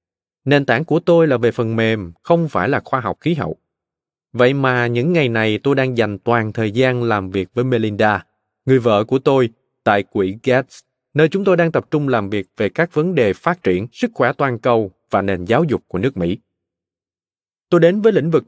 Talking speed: 220 wpm